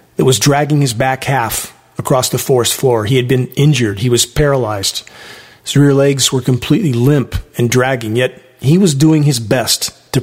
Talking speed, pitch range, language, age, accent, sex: 190 wpm, 125-155 Hz, English, 40-59, American, male